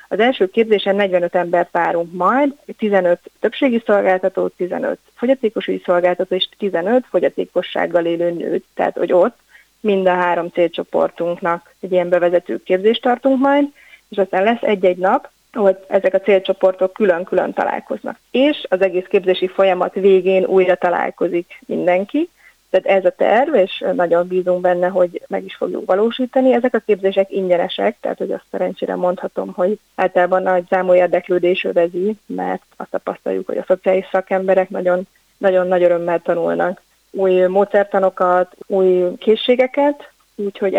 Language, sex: Hungarian, female